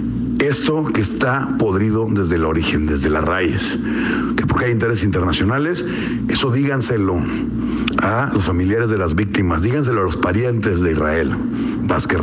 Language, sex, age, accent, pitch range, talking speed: Spanish, male, 60-79, Mexican, 105-140 Hz, 140 wpm